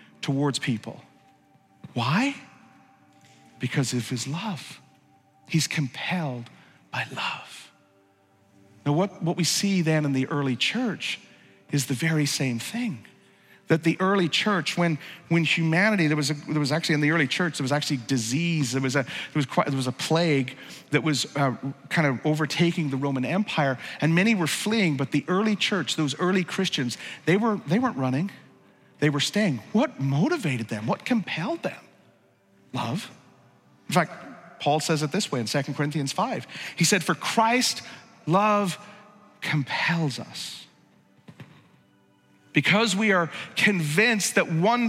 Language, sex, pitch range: English, male, 145-200 Hz